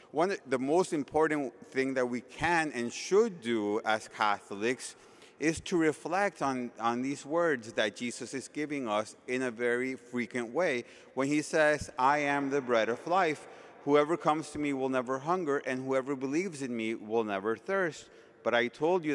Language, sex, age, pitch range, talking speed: English, male, 30-49, 115-155 Hz, 180 wpm